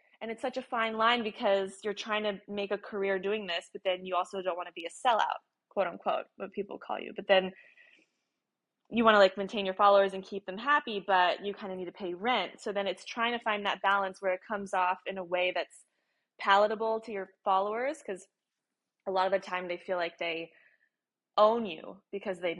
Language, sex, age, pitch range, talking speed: English, female, 20-39, 185-215 Hz, 225 wpm